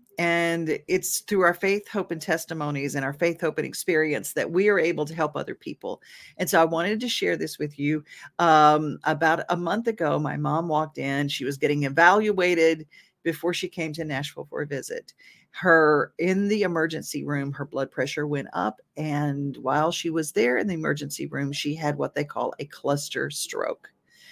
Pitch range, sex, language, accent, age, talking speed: 150-180 Hz, female, English, American, 40-59, 195 wpm